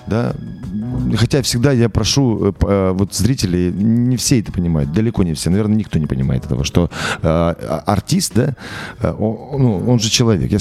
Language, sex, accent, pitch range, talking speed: Russian, male, native, 95-125 Hz, 145 wpm